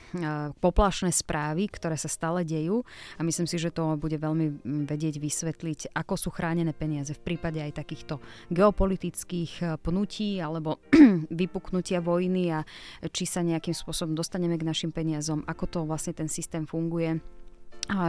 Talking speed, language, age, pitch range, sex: 145 wpm, Slovak, 20-39, 155-170 Hz, female